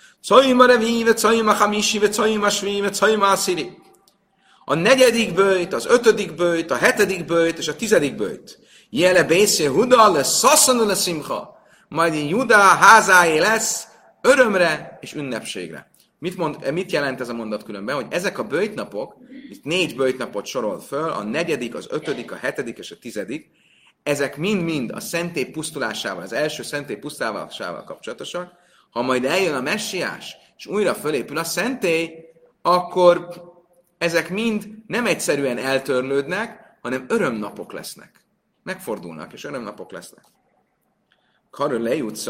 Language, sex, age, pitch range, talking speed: Hungarian, male, 30-49, 140-210 Hz, 130 wpm